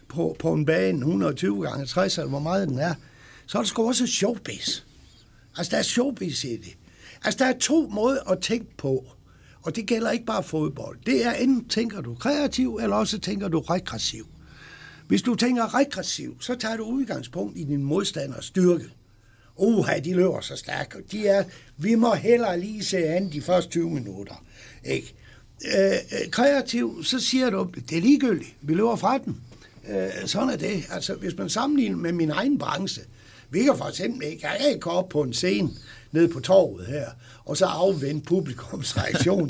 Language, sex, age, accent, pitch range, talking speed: Danish, male, 60-79, native, 140-225 Hz, 185 wpm